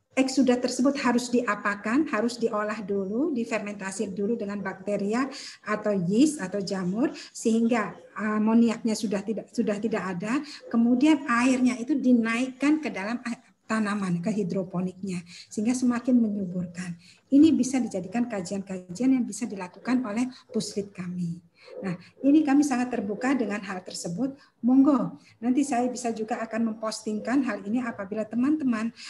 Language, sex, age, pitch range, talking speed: Indonesian, female, 50-69, 205-250 Hz, 130 wpm